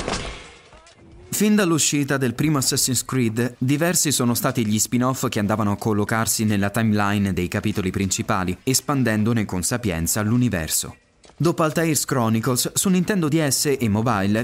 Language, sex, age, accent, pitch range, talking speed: Italian, male, 20-39, native, 110-155 Hz, 135 wpm